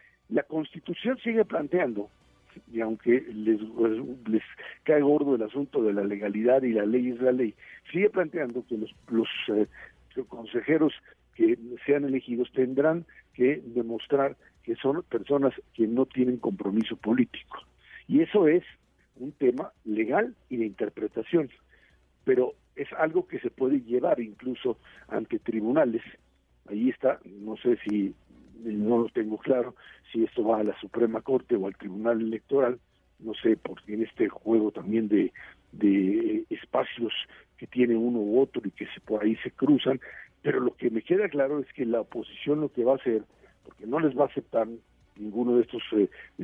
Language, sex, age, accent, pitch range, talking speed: Spanish, male, 50-69, Mexican, 110-150 Hz, 165 wpm